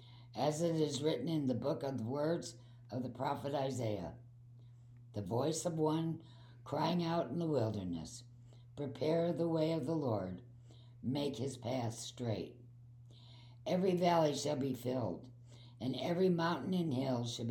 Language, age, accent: English, 60-79, American